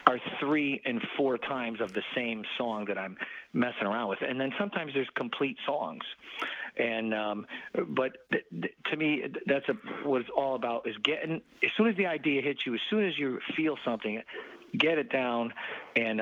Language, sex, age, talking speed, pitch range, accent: English, male, 50-69, 195 wpm, 115-140 Hz, American